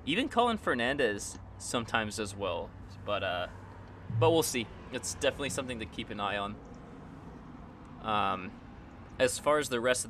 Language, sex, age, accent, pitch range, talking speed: English, male, 20-39, American, 100-120 Hz, 155 wpm